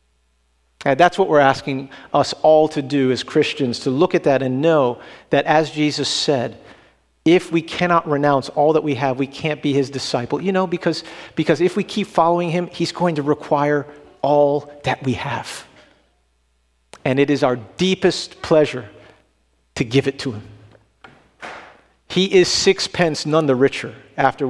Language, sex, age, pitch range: English, male, 50-69, 125-160 Hz